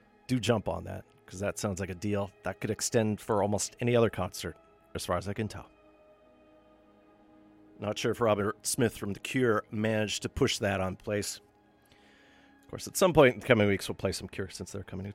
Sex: male